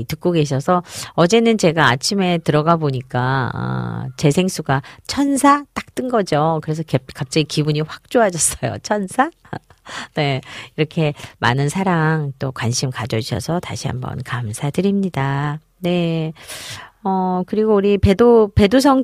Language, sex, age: Korean, female, 40-59